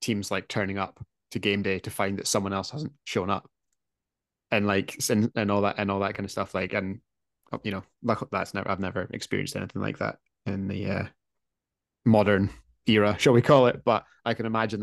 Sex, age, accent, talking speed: male, 20-39, British, 210 wpm